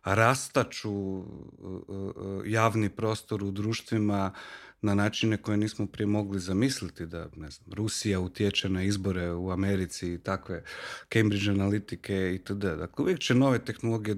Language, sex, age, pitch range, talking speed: Croatian, male, 40-59, 100-130 Hz, 135 wpm